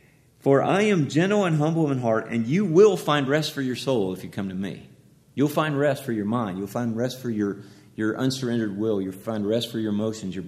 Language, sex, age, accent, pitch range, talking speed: English, male, 40-59, American, 110-150 Hz, 240 wpm